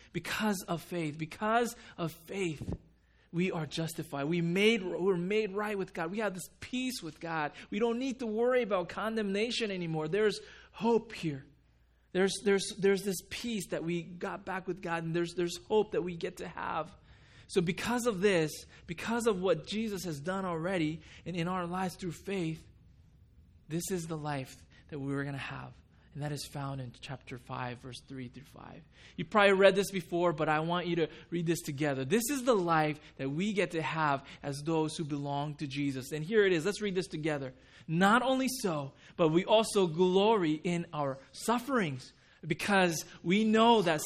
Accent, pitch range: American, 155-205 Hz